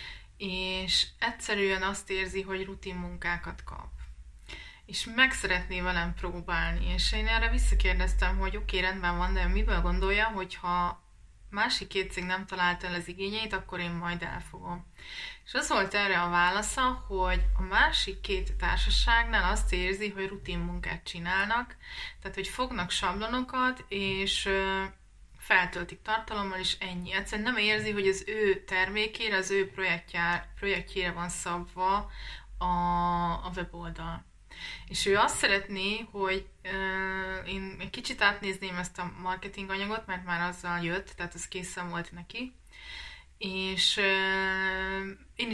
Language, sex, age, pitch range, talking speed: Hungarian, female, 20-39, 180-200 Hz, 140 wpm